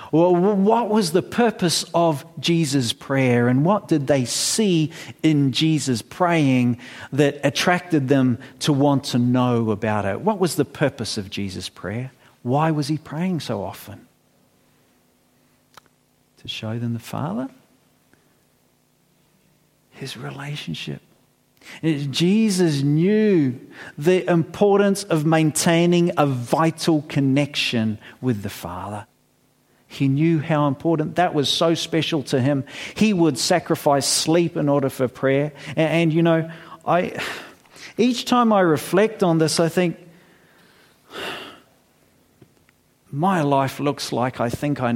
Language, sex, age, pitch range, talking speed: English, male, 50-69, 125-165 Hz, 125 wpm